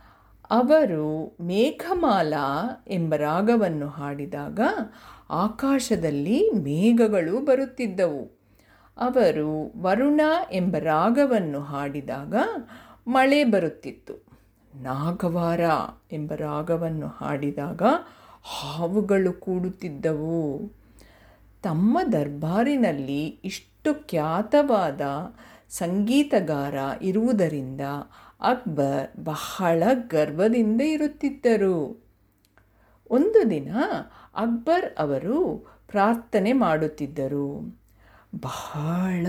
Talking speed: 45 wpm